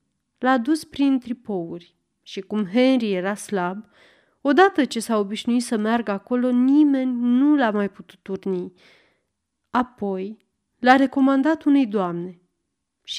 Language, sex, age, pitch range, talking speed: Romanian, female, 30-49, 195-255 Hz, 125 wpm